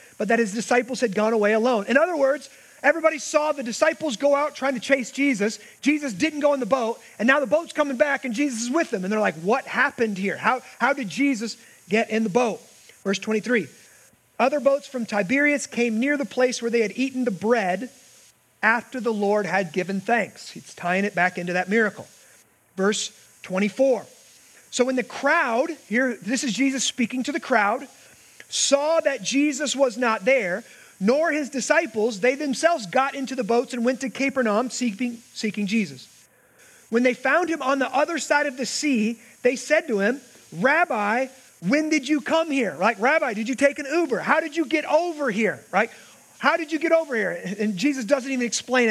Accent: American